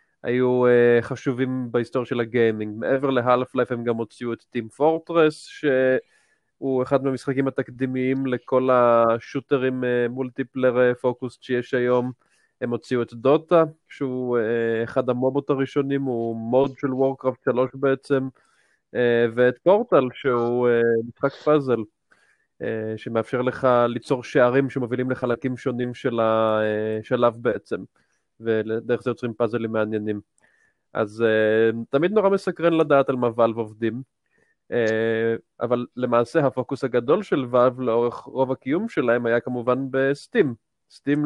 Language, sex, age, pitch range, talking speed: Hebrew, male, 20-39, 120-135 Hz, 125 wpm